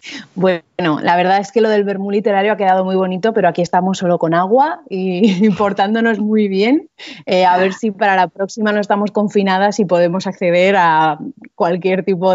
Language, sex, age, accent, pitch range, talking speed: Spanish, female, 30-49, Spanish, 180-230 Hz, 190 wpm